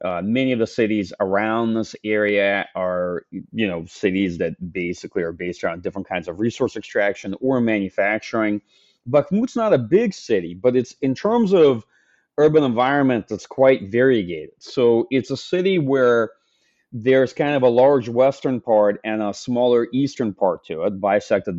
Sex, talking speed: male, 165 wpm